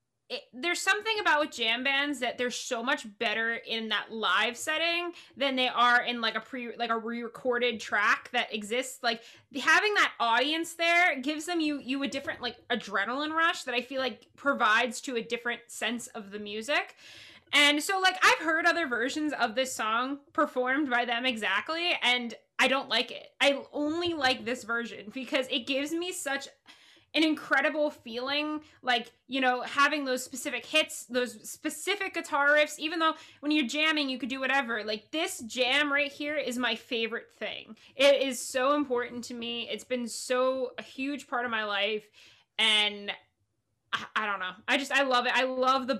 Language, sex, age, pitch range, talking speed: English, female, 20-39, 235-295 Hz, 185 wpm